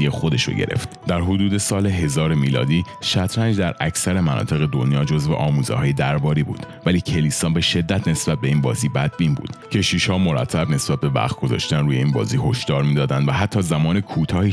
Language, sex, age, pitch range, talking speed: Persian, male, 30-49, 75-95 Hz, 170 wpm